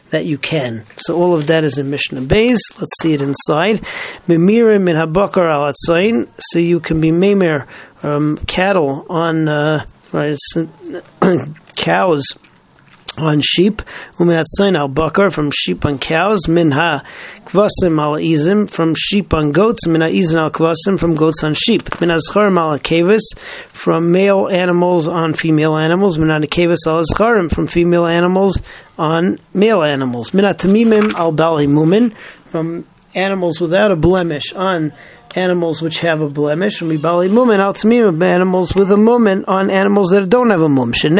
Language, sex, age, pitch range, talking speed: English, male, 40-59, 160-195 Hz, 145 wpm